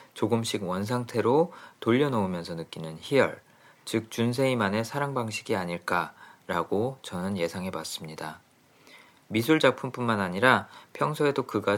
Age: 40-59